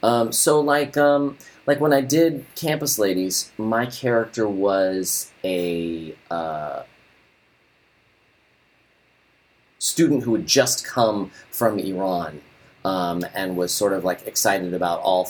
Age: 30-49